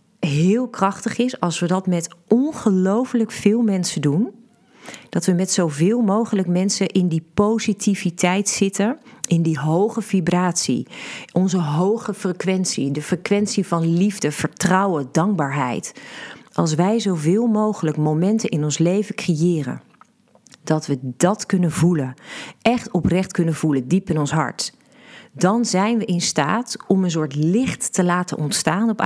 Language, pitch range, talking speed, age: Dutch, 155-210 Hz, 145 wpm, 40-59